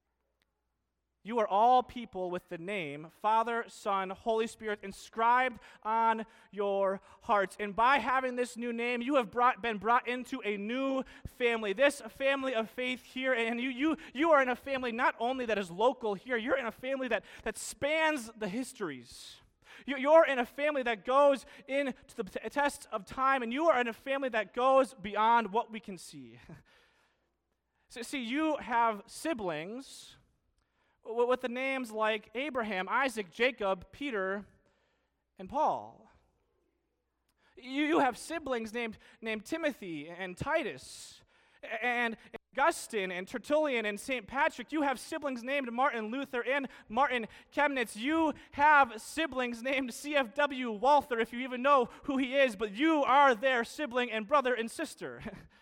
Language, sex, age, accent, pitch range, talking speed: English, male, 30-49, American, 220-275 Hz, 155 wpm